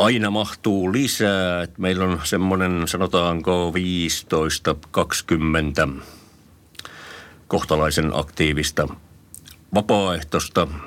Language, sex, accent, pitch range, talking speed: Finnish, male, native, 75-90 Hz, 65 wpm